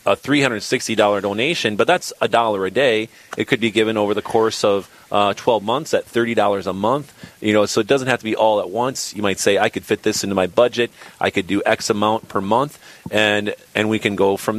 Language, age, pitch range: English, 30-49, 100-120 Hz